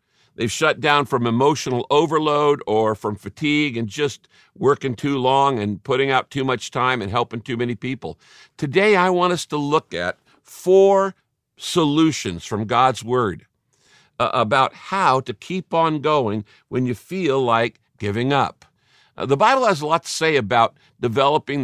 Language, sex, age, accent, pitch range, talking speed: English, male, 50-69, American, 120-160 Hz, 160 wpm